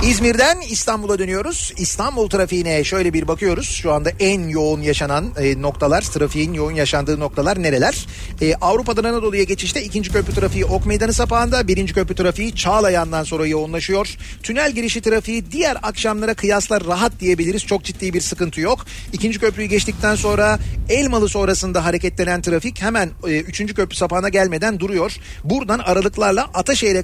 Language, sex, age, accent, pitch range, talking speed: Turkish, male, 40-59, native, 165-210 Hz, 145 wpm